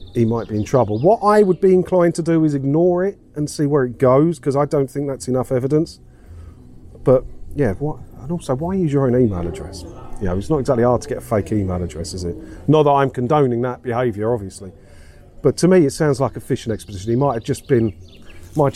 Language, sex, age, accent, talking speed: English, male, 40-59, British, 235 wpm